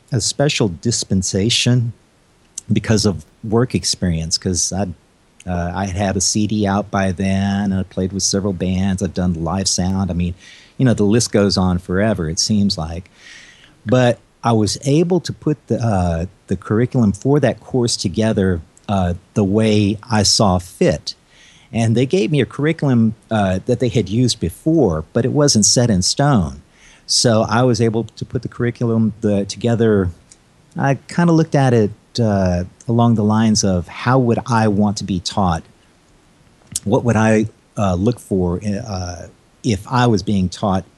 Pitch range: 95-120 Hz